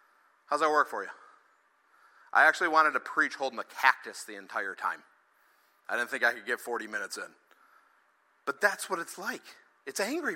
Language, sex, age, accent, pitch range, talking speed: English, male, 50-69, American, 245-360 Hz, 185 wpm